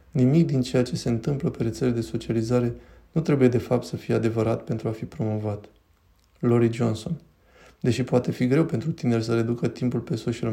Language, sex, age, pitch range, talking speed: Romanian, male, 20-39, 115-135 Hz, 195 wpm